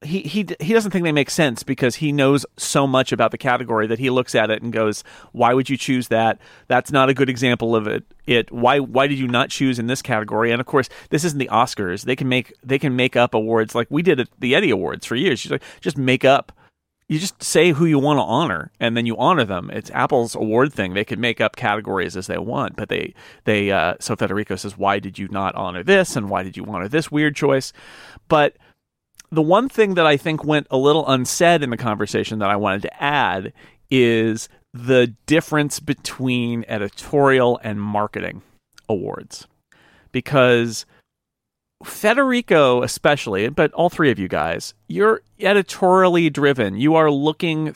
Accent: American